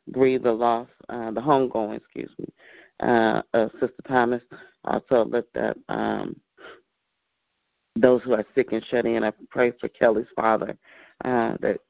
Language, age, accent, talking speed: English, 30-49, American, 150 wpm